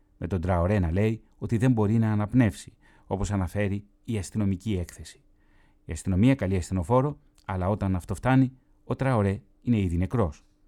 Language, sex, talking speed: Greek, male, 155 wpm